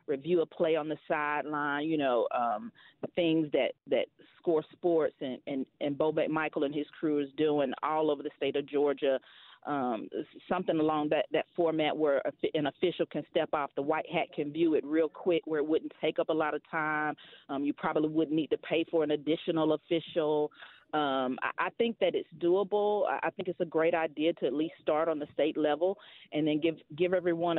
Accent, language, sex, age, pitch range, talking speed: American, English, female, 40-59, 150-175 Hz, 210 wpm